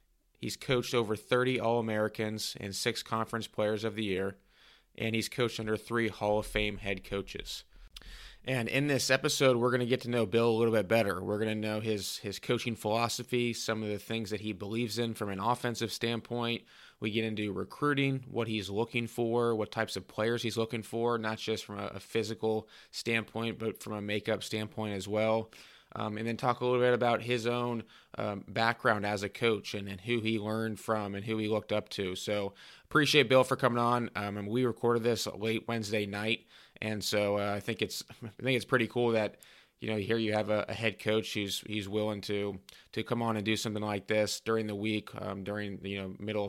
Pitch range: 105-115 Hz